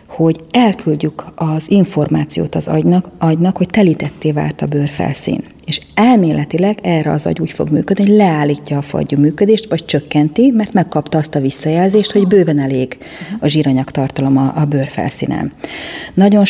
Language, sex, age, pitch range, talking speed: Hungarian, female, 40-59, 145-185 Hz, 150 wpm